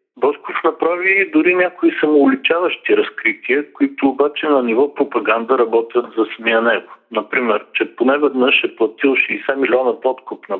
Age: 50-69